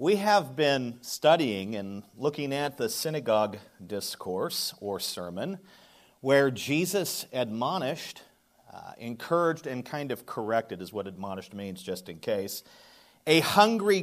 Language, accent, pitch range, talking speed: English, American, 110-160 Hz, 130 wpm